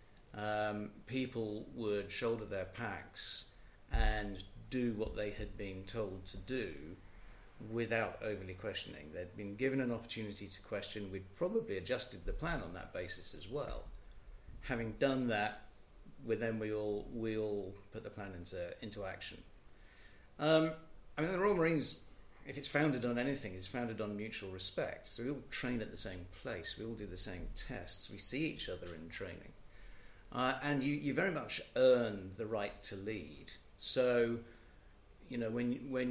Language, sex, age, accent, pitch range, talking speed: English, male, 50-69, British, 100-130 Hz, 170 wpm